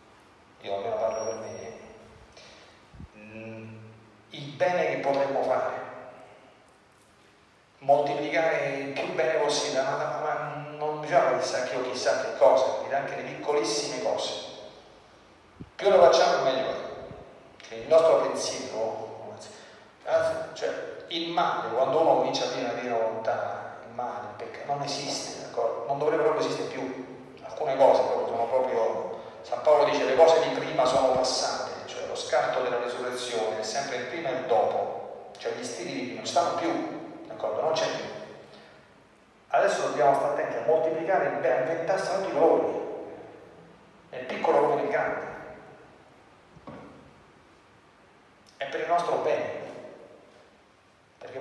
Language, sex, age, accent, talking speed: Italian, male, 40-59, native, 130 wpm